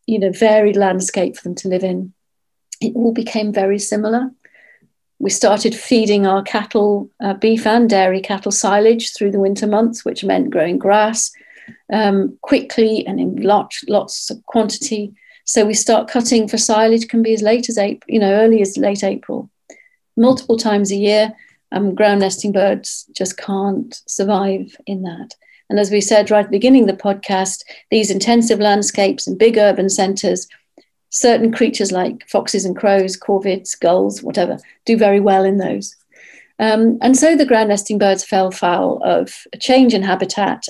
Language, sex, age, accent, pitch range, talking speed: English, female, 50-69, British, 195-230 Hz, 175 wpm